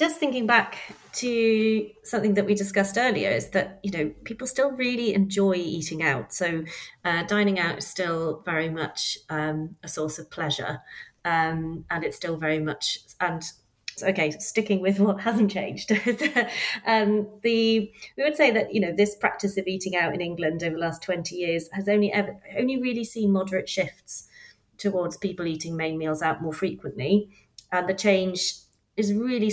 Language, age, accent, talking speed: English, 30-49, British, 175 wpm